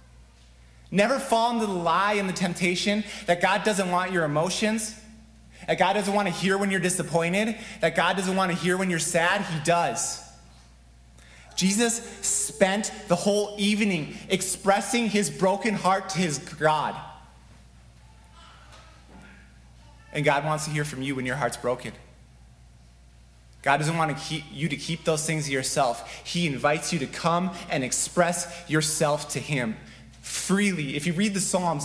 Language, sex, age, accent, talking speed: English, male, 30-49, American, 155 wpm